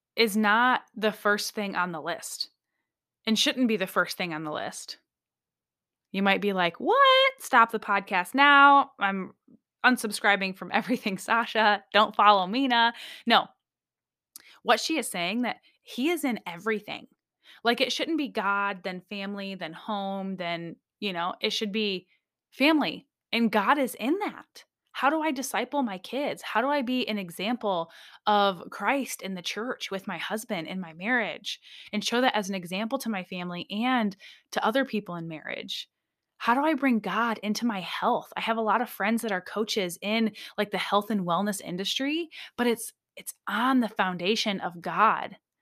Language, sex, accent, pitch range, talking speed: English, female, American, 195-245 Hz, 180 wpm